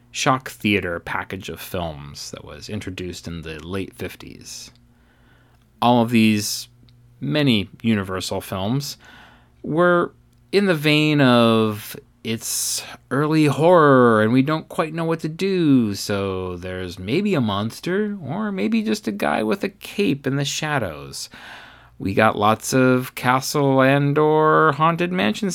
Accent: American